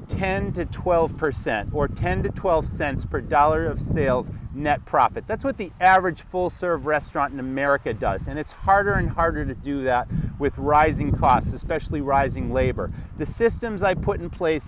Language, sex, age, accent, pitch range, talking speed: English, male, 30-49, American, 140-195 Hz, 180 wpm